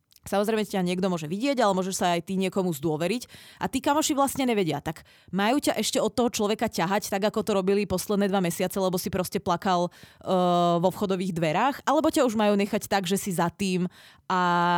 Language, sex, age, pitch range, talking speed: Czech, female, 20-39, 180-225 Hz, 205 wpm